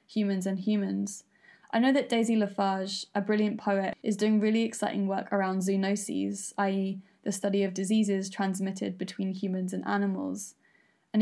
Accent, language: British, English